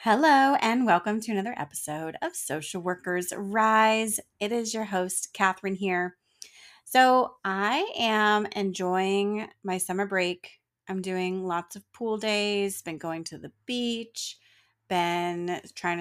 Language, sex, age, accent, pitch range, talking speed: English, female, 30-49, American, 180-225 Hz, 135 wpm